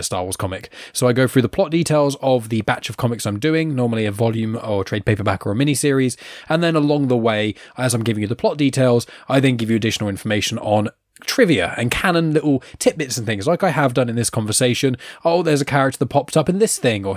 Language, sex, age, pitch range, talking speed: English, male, 10-29, 115-145 Hz, 250 wpm